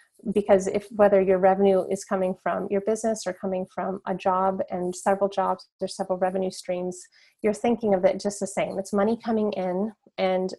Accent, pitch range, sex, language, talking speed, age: American, 190-215 Hz, female, English, 195 wpm, 30-49